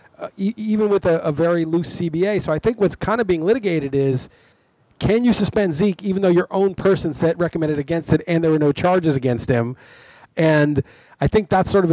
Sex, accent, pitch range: male, American, 155-195 Hz